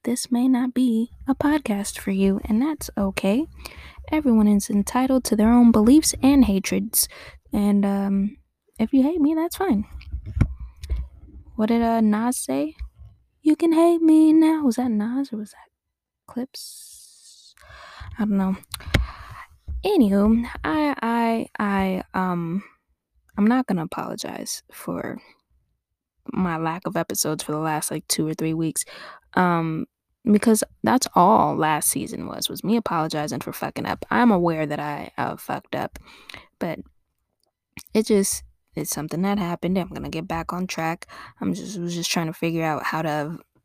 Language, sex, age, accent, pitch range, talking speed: English, female, 10-29, American, 165-245 Hz, 155 wpm